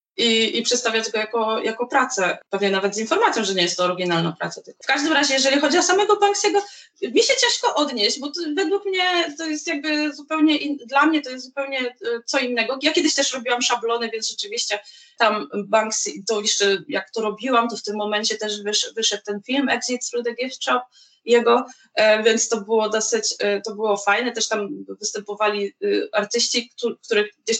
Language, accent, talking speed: Polish, native, 190 wpm